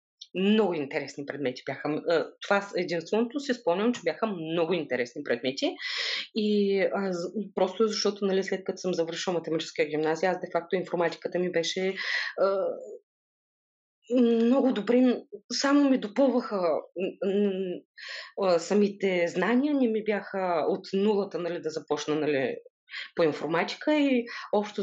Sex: female